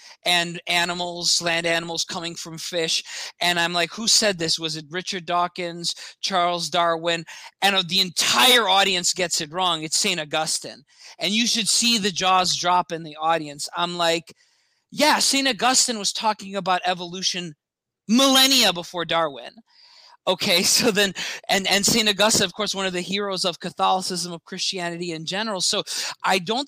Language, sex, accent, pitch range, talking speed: English, male, American, 175-215 Hz, 165 wpm